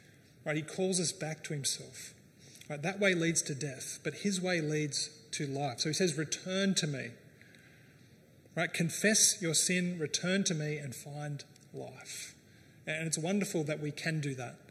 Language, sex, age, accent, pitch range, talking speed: English, male, 30-49, Australian, 145-180 Hz, 180 wpm